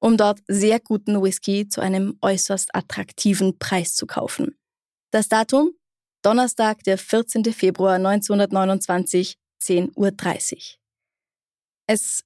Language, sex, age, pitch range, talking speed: German, female, 20-39, 195-235 Hz, 105 wpm